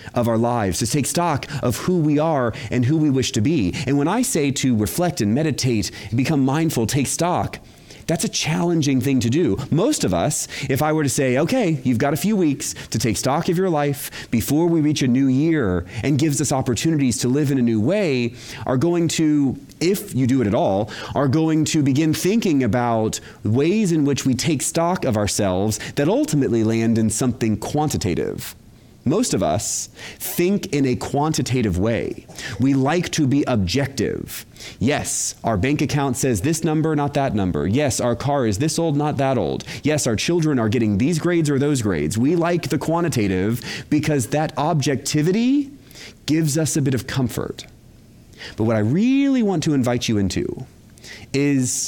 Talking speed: 190 wpm